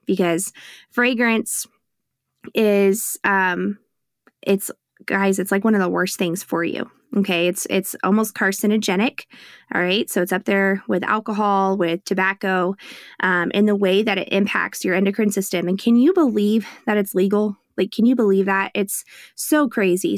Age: 20-39